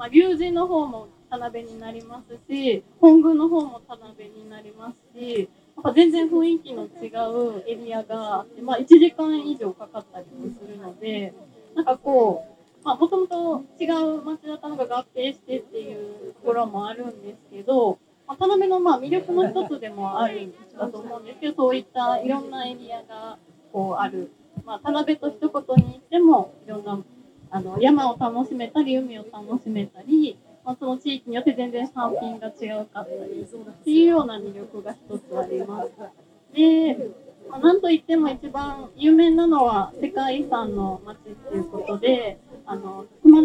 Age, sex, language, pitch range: 20-39, female, Japanese, 215-310 Hz